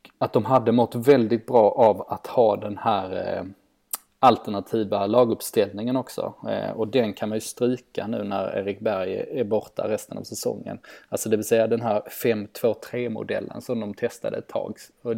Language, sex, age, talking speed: Swedish, male, 20-39, 165 wpm